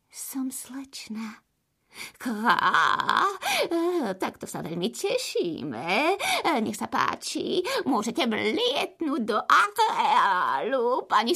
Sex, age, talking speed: female, 30-49, 75 wpm